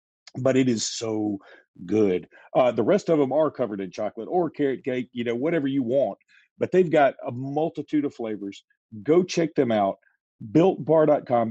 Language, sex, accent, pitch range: English, male, American, 110-140 Hz